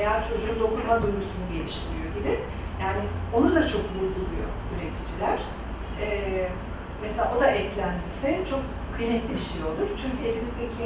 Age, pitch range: 40-59, 210-325 Hz